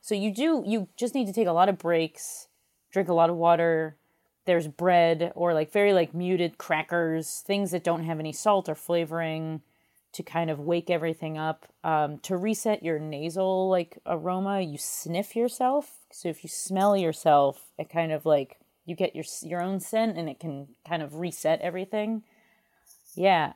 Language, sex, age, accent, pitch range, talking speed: English, female, 30-49, American, 160-210 Hz, 185 wpm